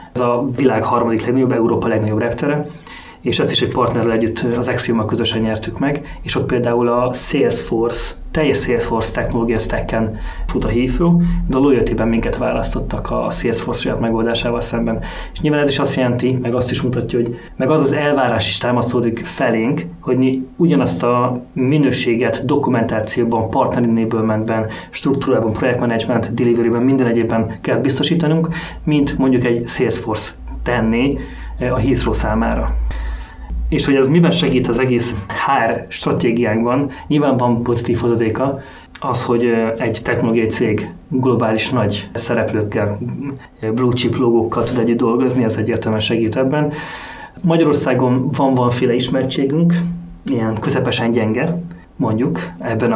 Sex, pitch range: male, 115-135 Hz